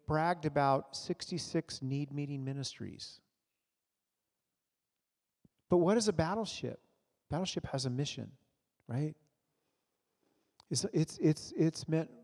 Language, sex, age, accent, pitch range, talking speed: English, male, 40-59, American, 140-180 Hz, 110 wpm